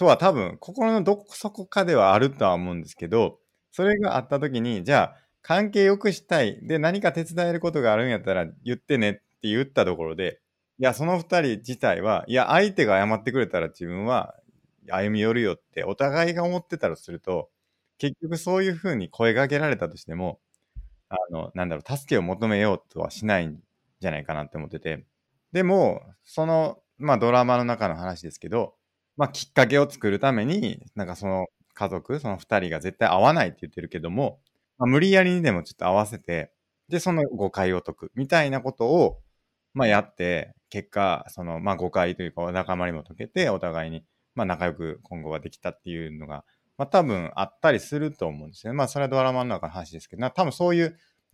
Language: Japanese